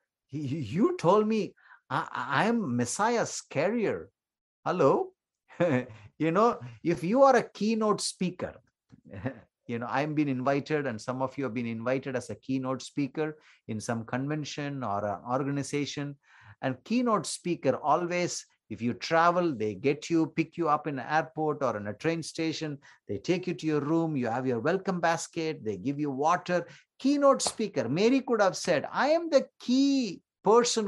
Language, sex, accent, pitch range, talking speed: English, male, Indian, 130-205 Hz, 165 wpm